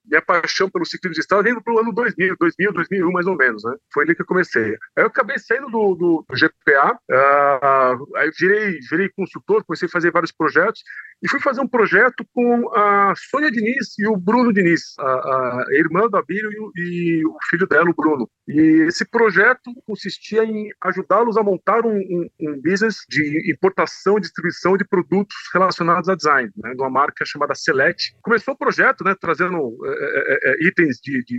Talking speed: 200 wpm